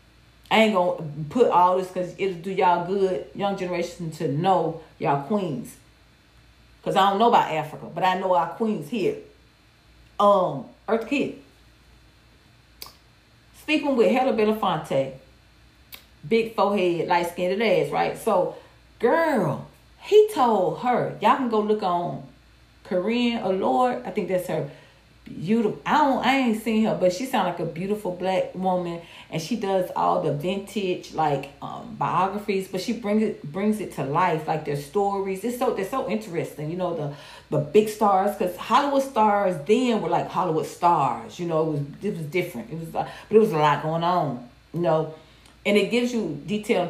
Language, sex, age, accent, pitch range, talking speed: English, female, 40-59, American, 155-215 Hz, 175 wpm